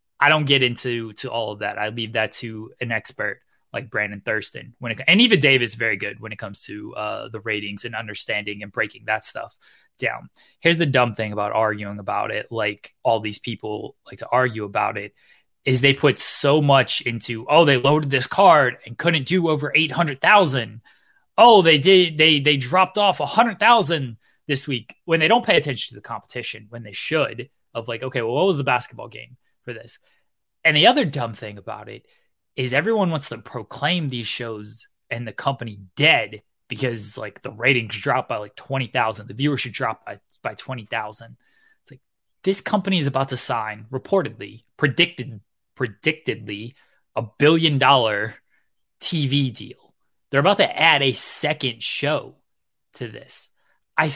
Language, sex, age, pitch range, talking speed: English, male, 20-39, 110-155 Hz, 180 wpm